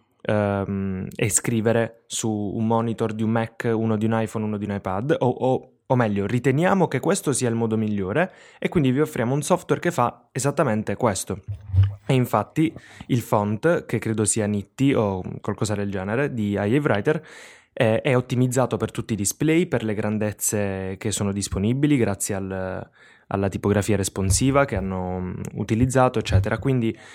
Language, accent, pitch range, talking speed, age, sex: Italian, native, 100-125 Hz, 160 wpm, 20-39, male